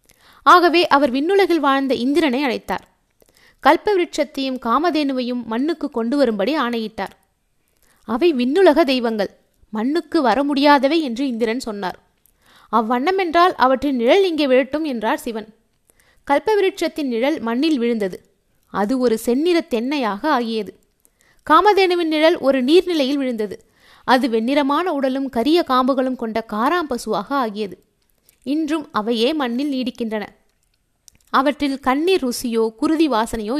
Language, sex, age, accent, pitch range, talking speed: Tamil, female, 20-39, native, 240-315 Hz, 105 wpm